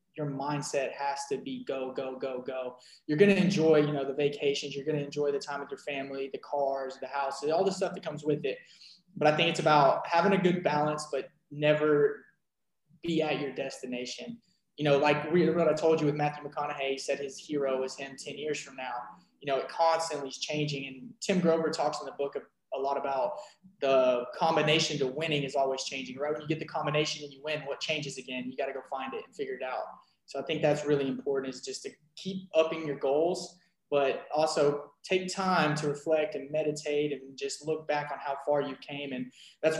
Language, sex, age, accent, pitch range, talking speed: English, male, 20-39, American, 135-160 Hz, 225 wpm